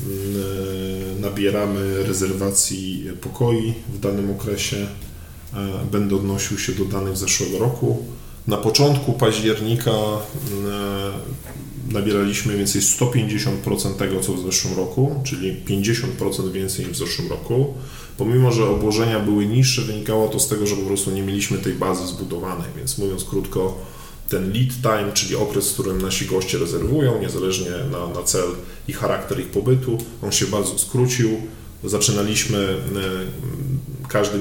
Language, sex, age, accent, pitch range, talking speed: Polish, male, 10-29, native, 95-115 Hz, 130 wpm